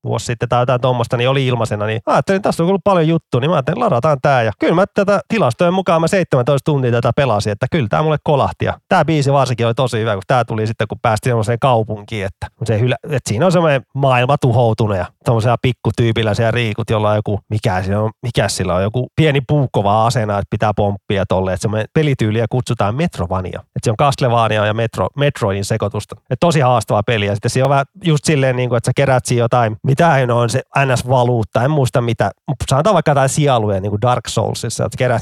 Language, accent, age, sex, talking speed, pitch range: Finnish, native, 30-49, male, 215 wpm, 105-135 Hz